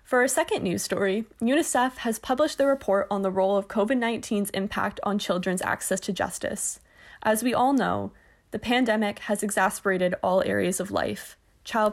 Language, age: English, 20-39